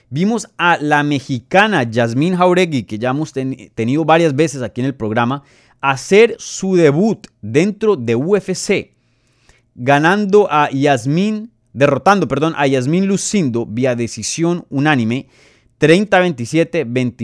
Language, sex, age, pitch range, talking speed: Spanish, male, 30-49, 120-160 Hz, 120 wpm